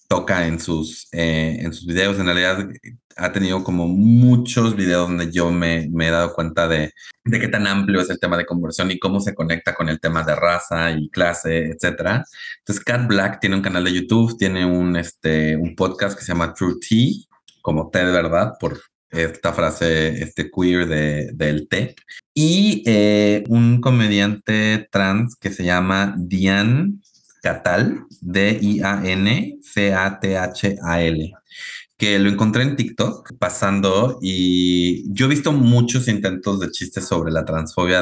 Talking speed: 160 wpm